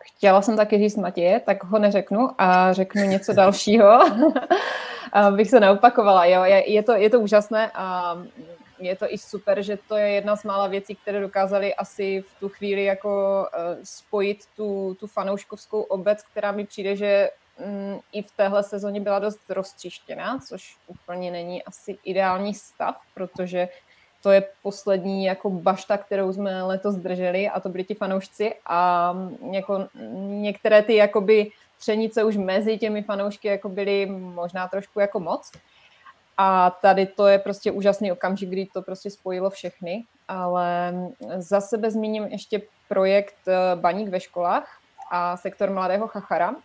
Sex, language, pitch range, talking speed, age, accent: female, Czech, 190-210 Hz, 155 wpm, 20-39, native